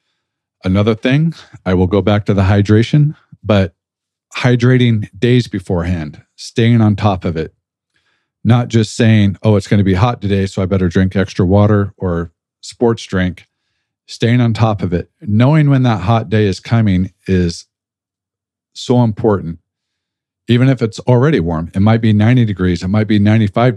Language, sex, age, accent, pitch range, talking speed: English, male, 40-59, American, 95-115 Hz, 165 wpm